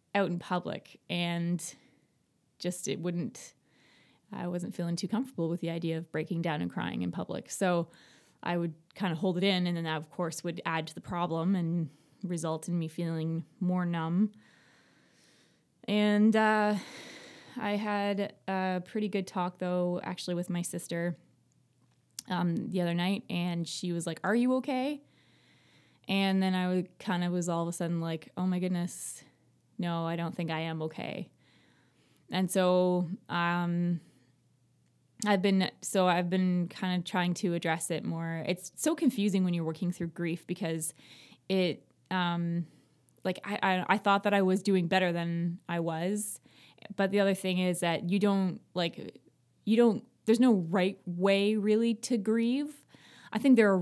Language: English